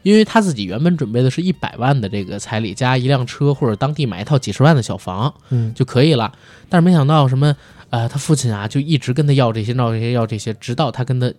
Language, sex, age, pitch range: Chinese, male, 20-39, 120-180 Hz